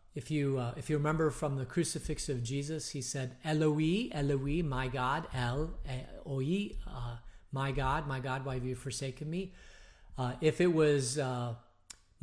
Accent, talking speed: American, 165 wpm